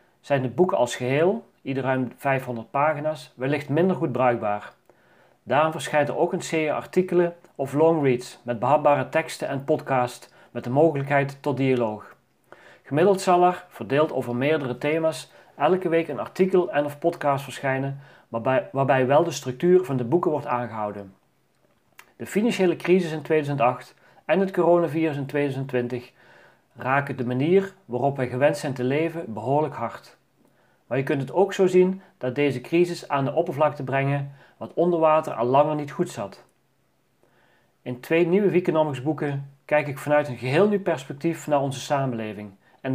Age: 40-59